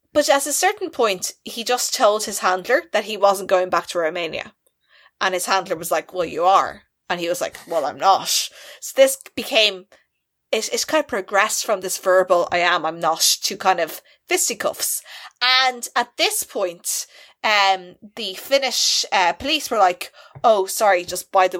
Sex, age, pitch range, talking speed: female, 20-39, 185-265 Hz, 185 wpm